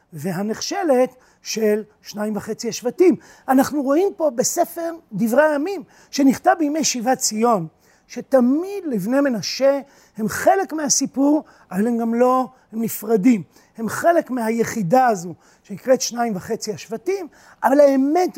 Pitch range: 215-280 Hz